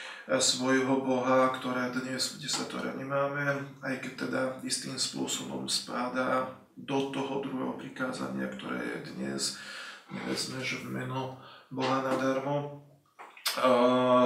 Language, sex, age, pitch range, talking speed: Slovak, male, 20-39, 125-135 Hz, 120 wpm